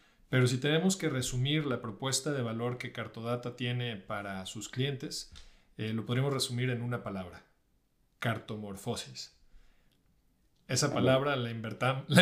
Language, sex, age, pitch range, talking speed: Spanish, male, 40-59, 115-155 Hz, 130 wpm